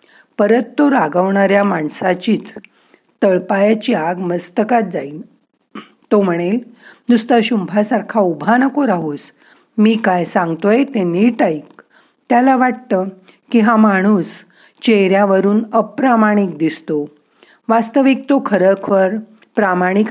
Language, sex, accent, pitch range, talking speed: Marathi, female, native, 175-235 Hz, 100 wpm